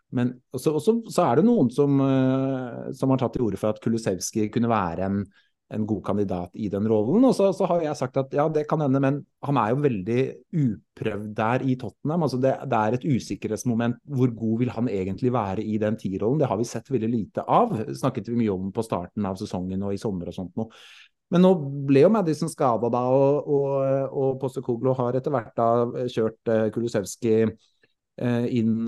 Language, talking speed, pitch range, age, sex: English, 205 wpm, 105-135 Hz, 30-49, male